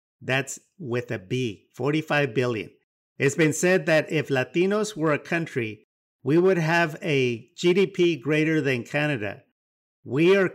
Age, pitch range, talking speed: 50-69, 125-170 Hz, 140 wpm